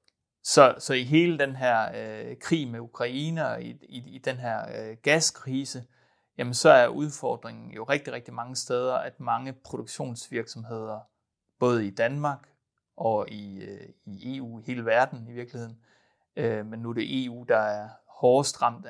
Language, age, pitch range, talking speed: Danish, 30-49, 115-135 Hz, 160 wpm